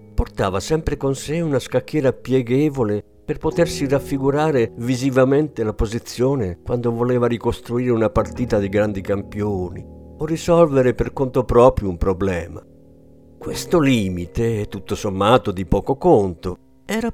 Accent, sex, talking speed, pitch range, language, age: native, male, 125 wpm, 100-150 Hz, Italian, 50-69